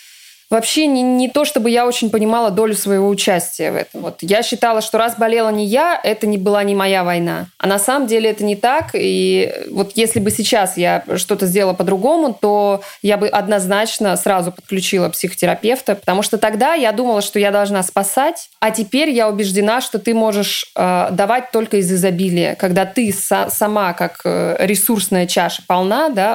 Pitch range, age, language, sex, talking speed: 185-225 Hz, 20-39, Russian, female, 180 wpm